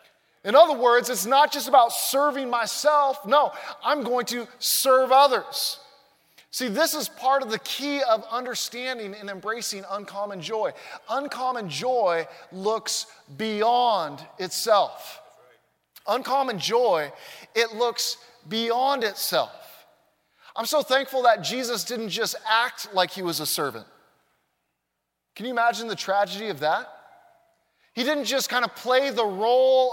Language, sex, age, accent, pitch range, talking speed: English, male, 20-39, American, 190-250 Hz, 135 wpm